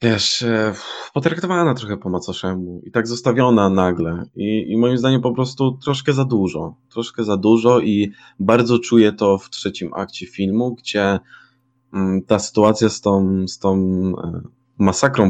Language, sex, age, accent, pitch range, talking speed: Polish, male, 20-39, native, 95-120 Hz, 140 wpm